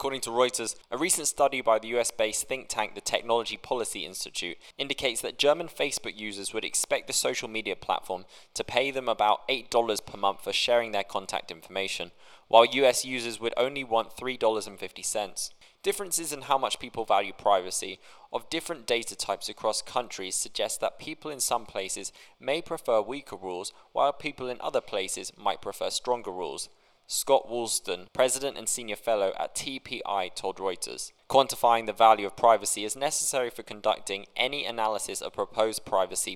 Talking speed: 165 wpm